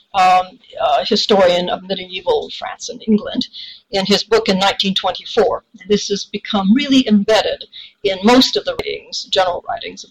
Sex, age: female, 60-79